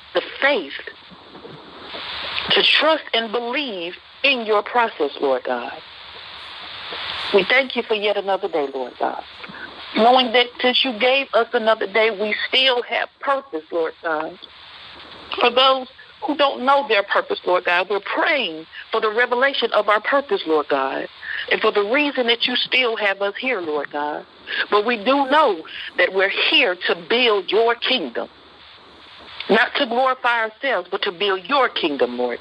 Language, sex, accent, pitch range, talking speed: English, female, American, 200-255 Hz, 160 wpm